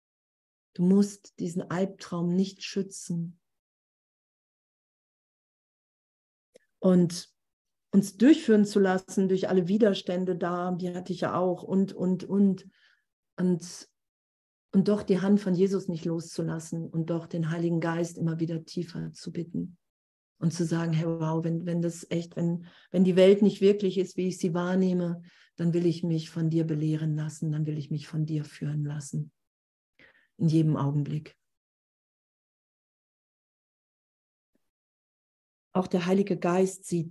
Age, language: 40-59, German